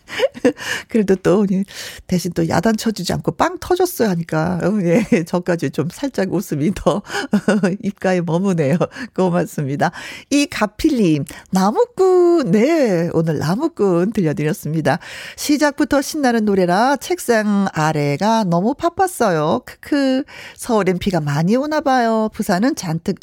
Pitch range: 170-245 Hz